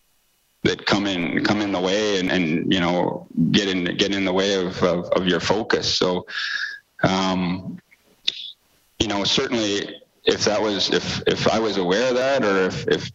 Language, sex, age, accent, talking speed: English, male, 30-49, American, 185 wpm